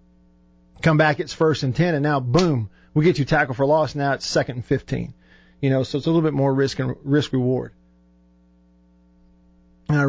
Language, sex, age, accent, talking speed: English, male, 40-59, American, 200 wpm